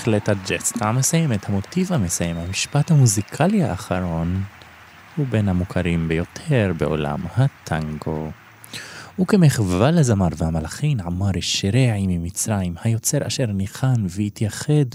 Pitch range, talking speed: 90-125 Hz, 95 wpm